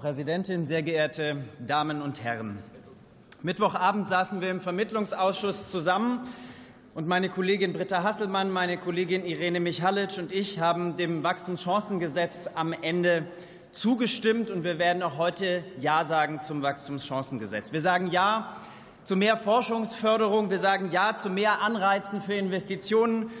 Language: German